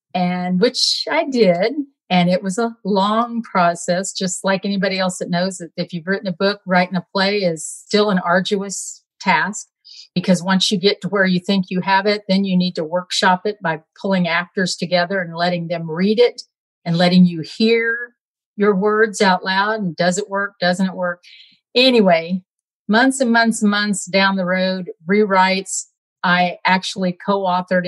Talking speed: 180 wpm